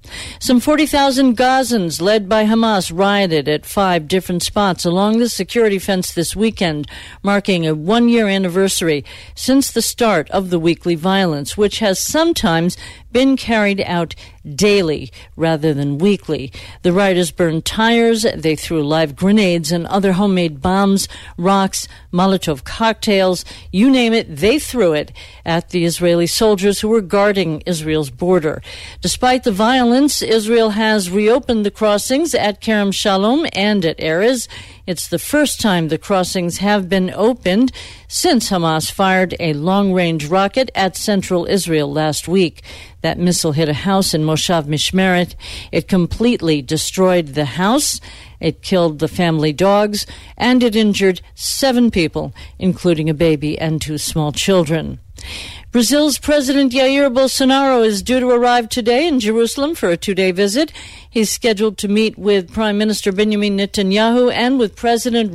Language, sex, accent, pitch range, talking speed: English, female, American, 170-225 Hz, 145 wpm